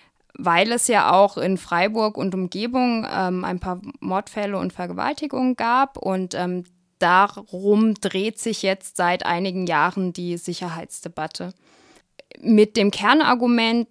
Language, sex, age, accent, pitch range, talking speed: German, female, 20-39, German, 180-225 Hz, 125 wpm